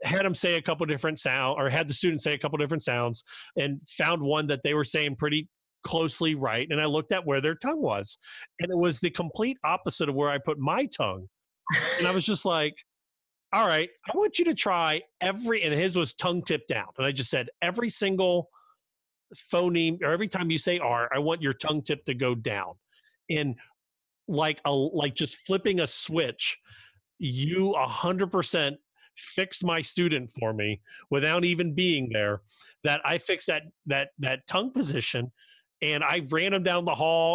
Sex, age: male, 40-59